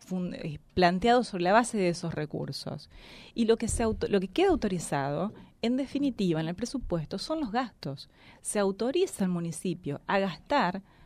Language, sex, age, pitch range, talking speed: Spanish, female, 30-49, 180-250 Hz, 170 wpm